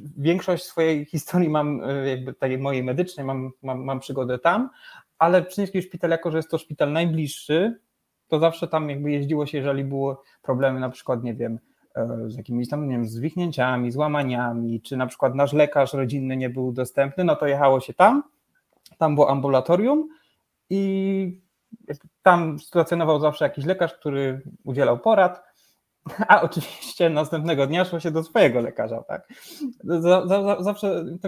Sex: male